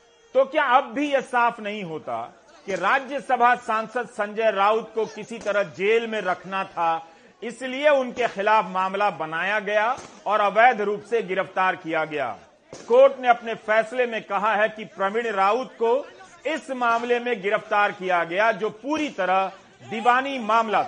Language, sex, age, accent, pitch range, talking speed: Hindi, male, 40-59, native, 200-250 Hz, 160 wpm